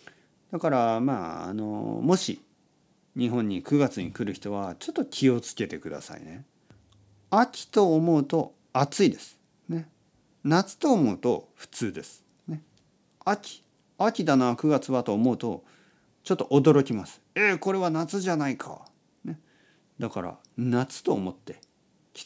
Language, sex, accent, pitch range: Japanese, male, native, 100-165 Hz